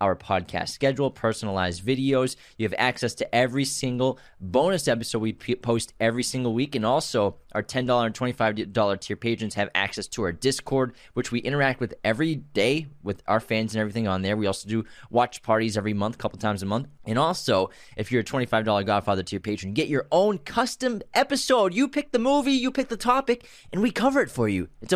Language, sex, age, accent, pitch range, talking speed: English, male, 20-39, American, 110-160 Hz, 200 wpm